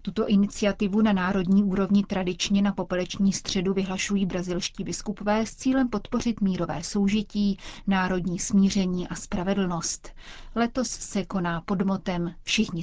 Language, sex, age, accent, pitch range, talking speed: Czech, female, 30-49, native, 185-210 Hz, 125 wpm